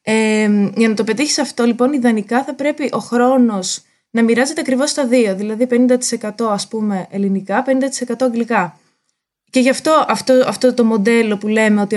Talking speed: 170 wpm